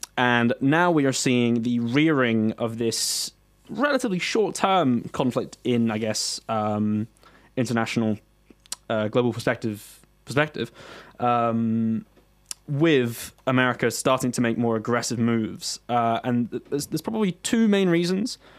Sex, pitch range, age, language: male, 110-130 Hz, 20-39, English